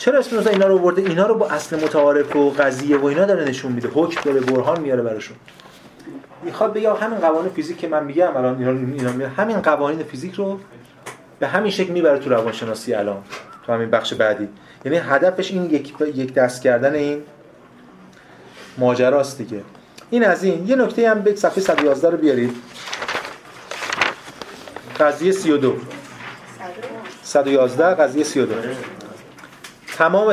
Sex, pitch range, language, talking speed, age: male, 130-175 Hz, Persian, 145 wpm, 30-49